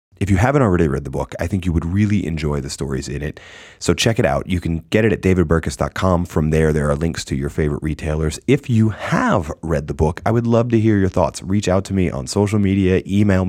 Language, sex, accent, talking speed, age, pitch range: English, male, American, 255 wpm, 30-49, 75-100 Hz